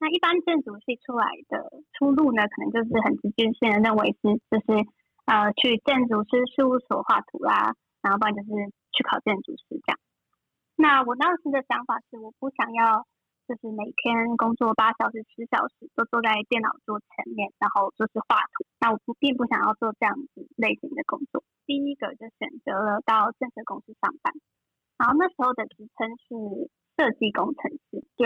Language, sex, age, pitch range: Chinese, female, 20-39, 220-275 Hz